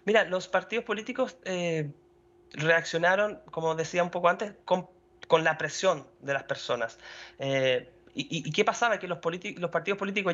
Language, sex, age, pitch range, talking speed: Portuguese, male, 20-39, 165-210 Hz, 155 wpm